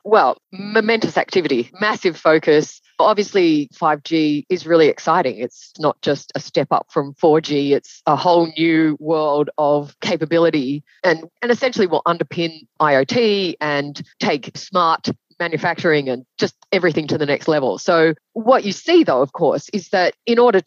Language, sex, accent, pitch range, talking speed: English, female, Australian, 145-175 Hz, 160 wpm